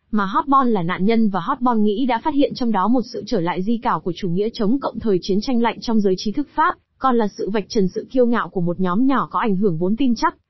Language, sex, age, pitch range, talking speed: Vietnamese, female, 20-39, 195-255 Hz, 290 wpm